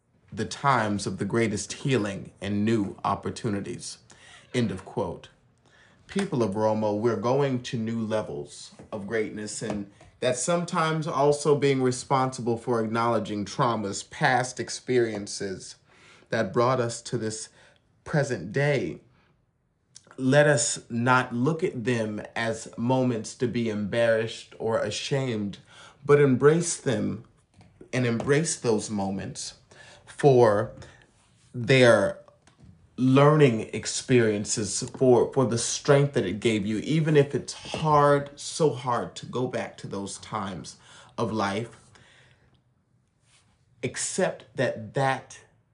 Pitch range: 110-135 Hz